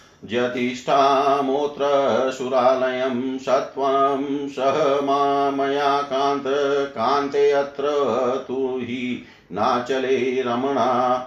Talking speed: 60 wpm